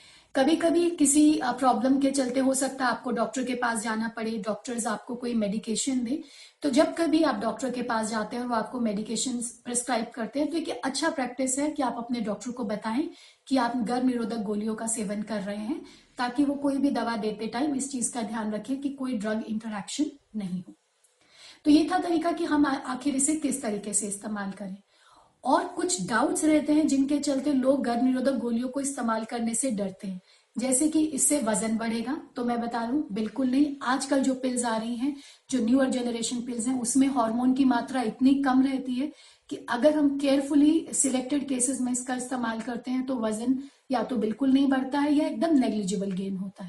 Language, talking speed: Hindi, 205 wpm